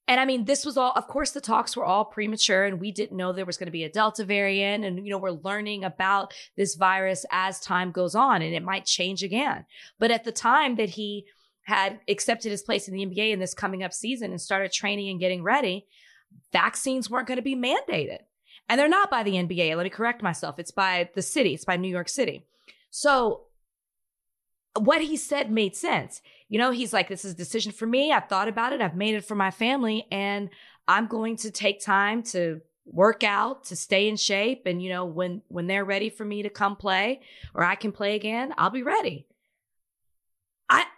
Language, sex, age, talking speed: English, female, 20-39, 220 wpm